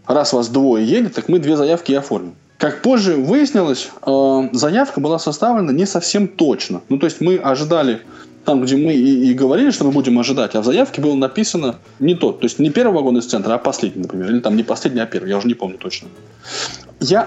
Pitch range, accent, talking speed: 125-175 Hz, native, 220 wpm